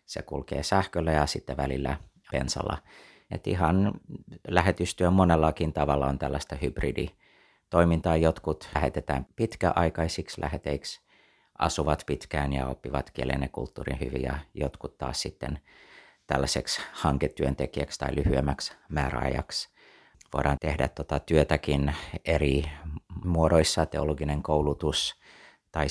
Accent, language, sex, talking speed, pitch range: native, Finnish, male, 95 wpm, 70-80 Hz